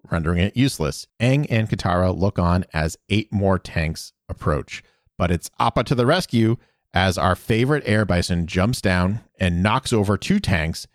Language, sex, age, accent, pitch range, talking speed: English, male, 40-59, American, 85-115 Hz, 170 wpm